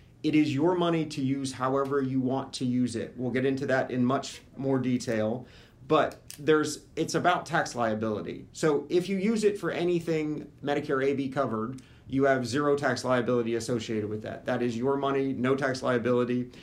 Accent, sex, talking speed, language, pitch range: American, male, 190 wpm, English, 120-145 Hz